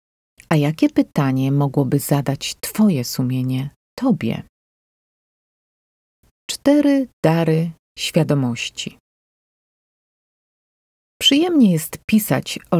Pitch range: 140-200 Hz